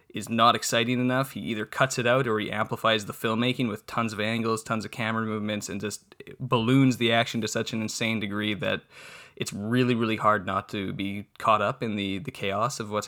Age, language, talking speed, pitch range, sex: 20-39, English, 220 wpm, 105-125 Hz, male